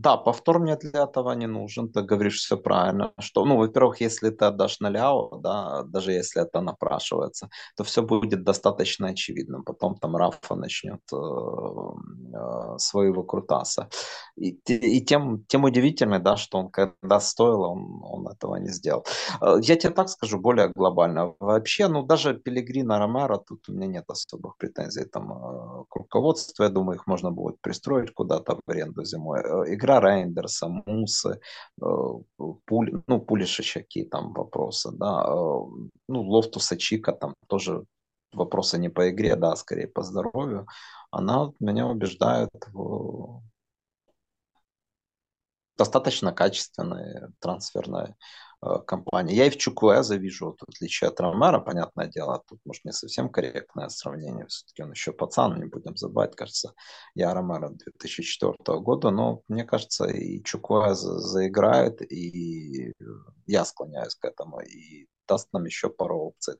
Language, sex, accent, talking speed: Russian, male, native, 145 wpm